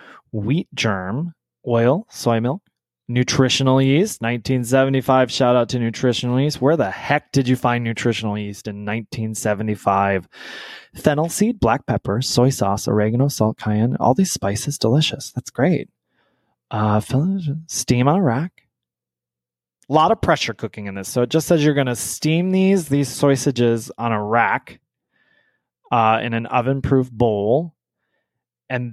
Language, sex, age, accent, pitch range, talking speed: English, male, 20-39, American, 110-150 Hz, 145 wpm